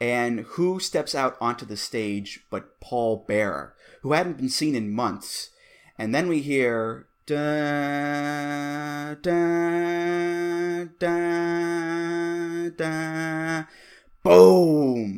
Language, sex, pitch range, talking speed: English, male, 125-170 Hz, 85 wpm